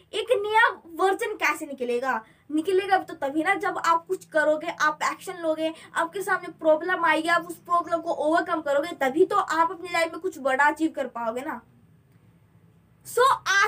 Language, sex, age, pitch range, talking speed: Hindi, female, 20-39, 310-395 Hz, 155 wpm